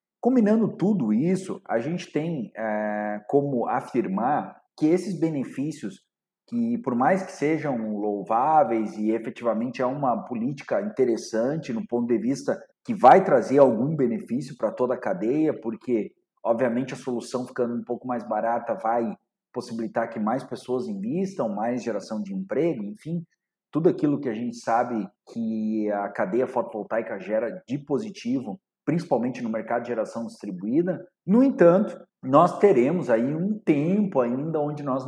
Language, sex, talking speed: Portuguese, male, 145 wpm